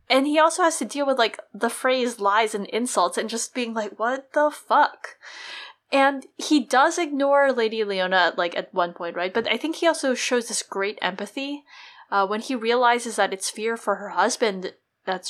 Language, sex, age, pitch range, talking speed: English, female, 20-39, 190-250 Hz, 200 wpm